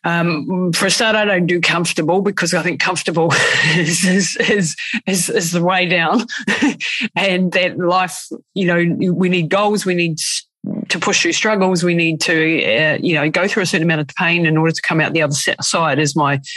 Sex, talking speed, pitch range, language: female, 205 wpm, 150-180 Hz, English